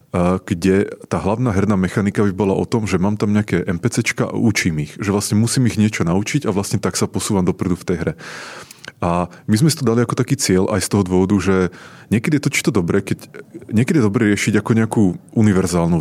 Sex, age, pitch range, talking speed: male, 30-49, 95-110 Hz, 220 wpm